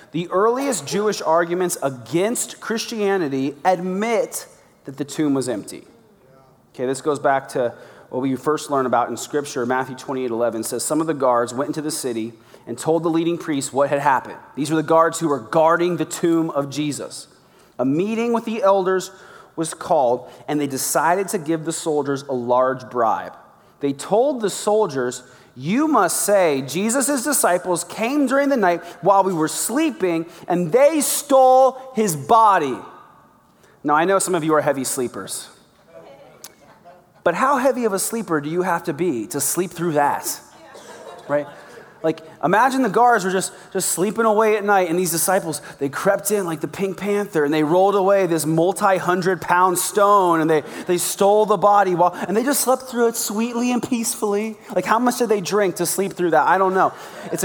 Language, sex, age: English, male, 30-49